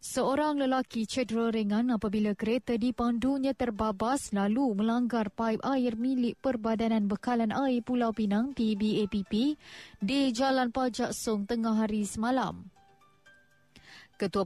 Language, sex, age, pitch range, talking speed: Malay, female, 20-39, 215-255 Hz, 110 wpm